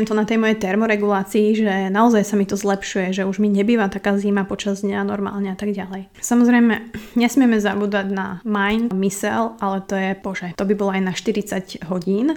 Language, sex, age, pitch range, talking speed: Slovak, female, 20-39, 195-220 Hz, 195 wpm